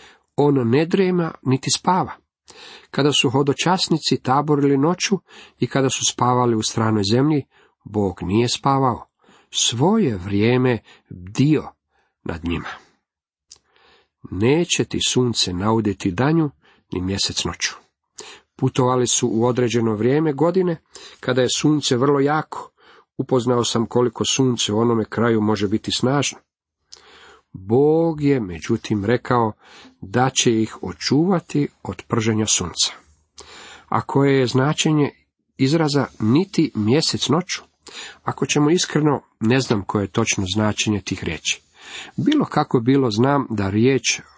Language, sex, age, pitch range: Croatian, male, 50-69, 110-145 Hz